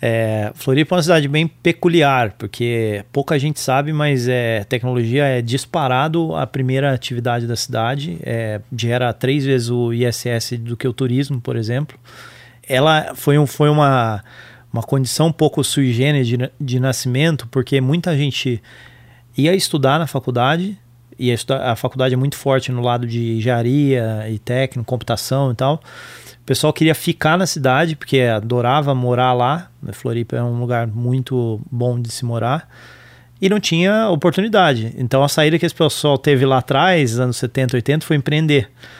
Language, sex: Portuguese, male